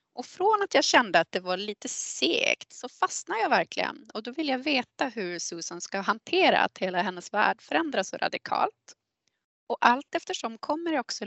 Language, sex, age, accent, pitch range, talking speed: Swedish, female, 20-39, native, 195-310 Hz, 190 wpm